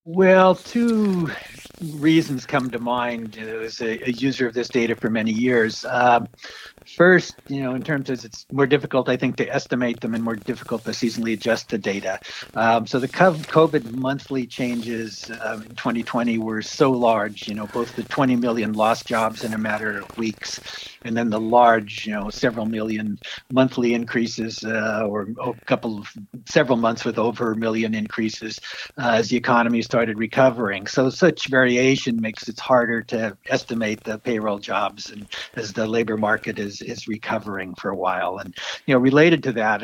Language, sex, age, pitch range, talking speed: English, male, 60-79, 110-125 Hz, 180 wpm